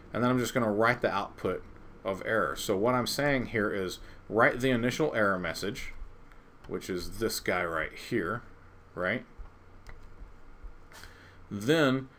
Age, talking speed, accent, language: 40-59, 150 wpm, American, English